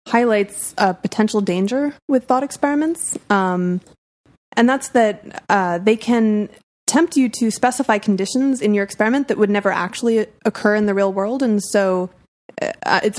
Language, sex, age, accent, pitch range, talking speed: English, female, 20-39, American, 180-220 Hz, 160 wpm